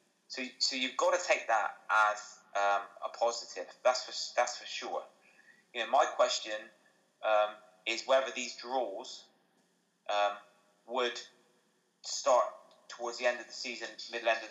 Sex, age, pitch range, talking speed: male, 20-39, 105-125 Hz, 155 wpm